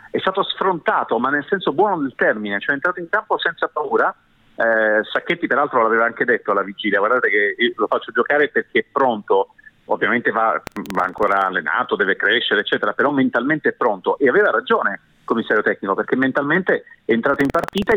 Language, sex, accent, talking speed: Italian, male, native, 185 wpm